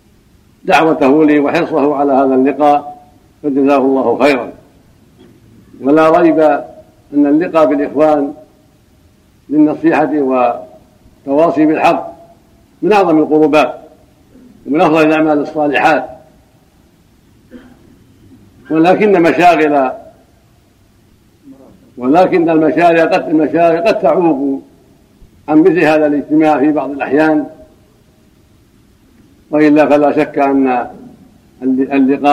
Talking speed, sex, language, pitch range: 80 wpm, male, Arabic, 135-155 Hz